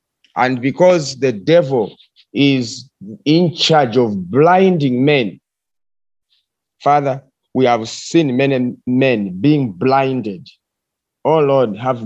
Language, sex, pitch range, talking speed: English, male, 125-155 Hz, 105 wpm